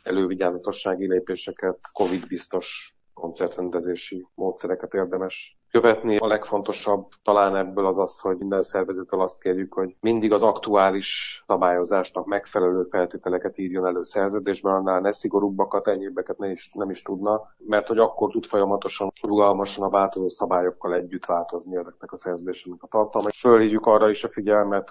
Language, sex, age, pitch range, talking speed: Hungarian, male, 30-49, 90-105 Hz, 140 wpm